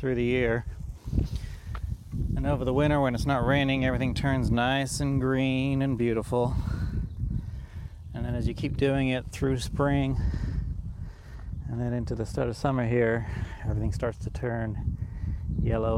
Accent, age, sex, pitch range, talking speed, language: American, 30-49, male, 100-120 Hz, 150 wpm, English